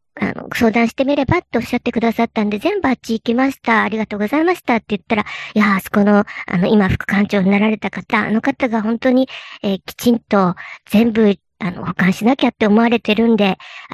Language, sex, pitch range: Japanese, male, 200-270 Hz